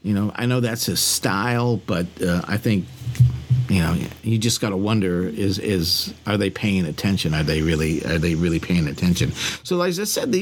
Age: 50-69